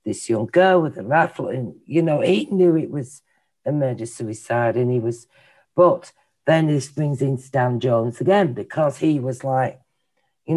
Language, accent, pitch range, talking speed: English, British, 125-160 Hz, 175 wpm